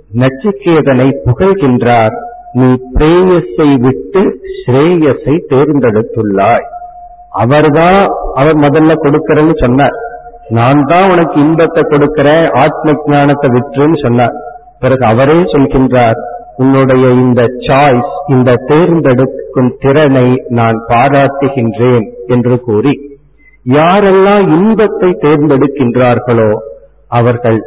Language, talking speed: Tamil, 85 wpm